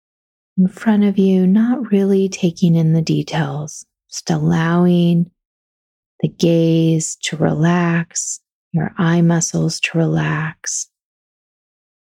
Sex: female